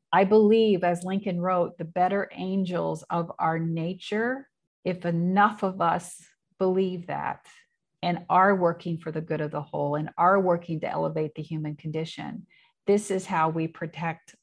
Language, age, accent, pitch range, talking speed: English, 40-59, American, 170-210 Hz, 160 wpm